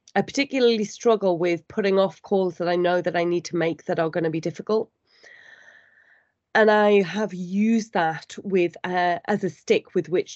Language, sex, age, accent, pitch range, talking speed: English, female, 30-49, British, 170-220 Hz, 190 wpm